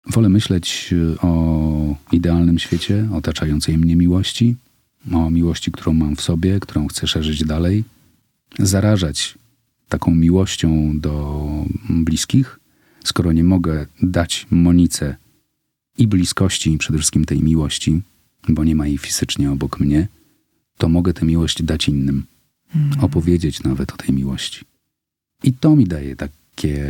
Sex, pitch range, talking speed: male, 75-105 Hz, 130 wpm